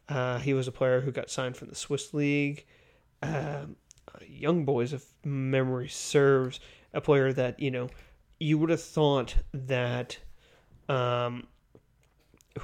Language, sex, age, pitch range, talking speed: English, male, 30-49, 130-150 Hz, 140 wpm